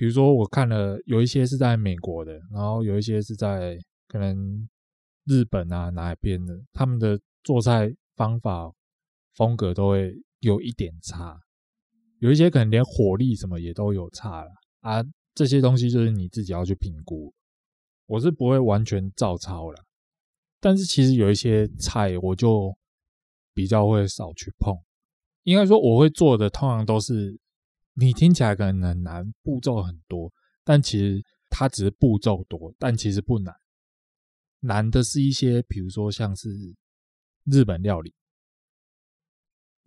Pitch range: 95-130 Hz